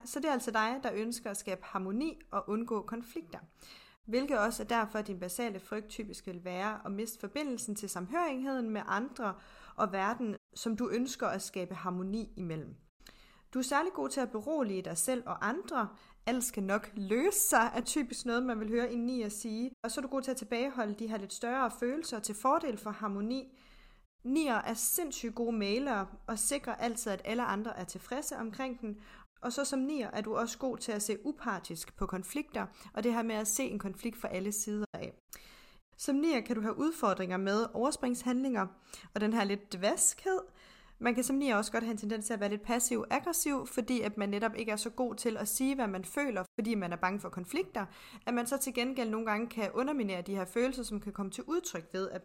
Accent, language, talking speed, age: native, Danish, 215 wpm, 30-49